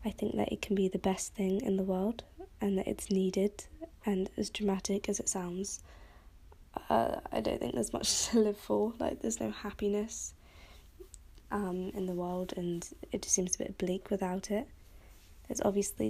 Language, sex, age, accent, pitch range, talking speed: English, female, 20-39, British, 180-205 Hz, 185 wpm